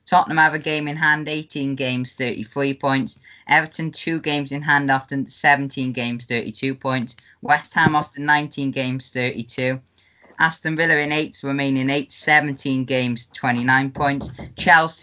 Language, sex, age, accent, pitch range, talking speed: English, female, 10-29, British, 120-145 Hz, 150 wpm